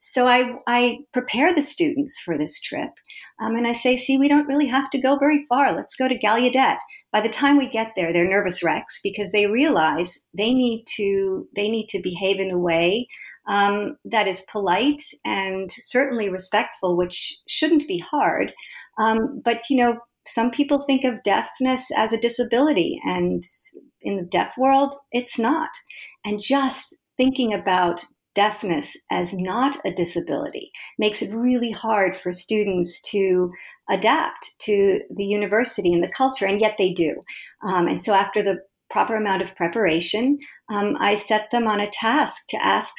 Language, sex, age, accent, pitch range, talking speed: English, female, 50-69, American, 190-255 Hz, 170 wpm